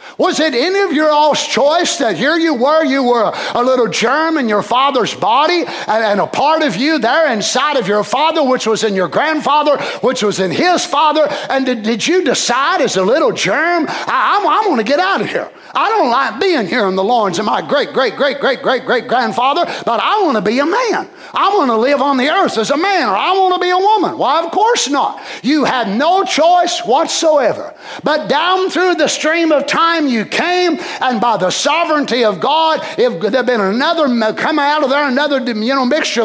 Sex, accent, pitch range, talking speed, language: male, American, 255-325 Hz, 225 wpm, English